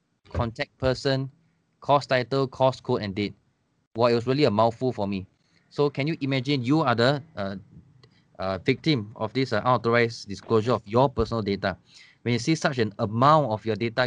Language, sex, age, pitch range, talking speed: English, male, 20-39, 110-140 Hz, 190 wpm